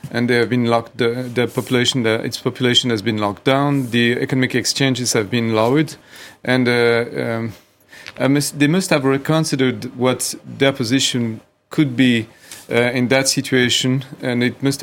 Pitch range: 120-140 Hz